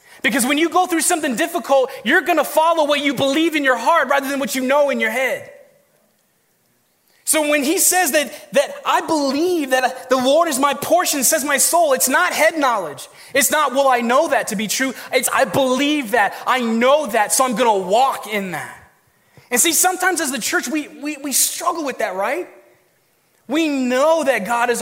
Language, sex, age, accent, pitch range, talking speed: English, male, 20-39, American, 230-305 Hz, 210 wpm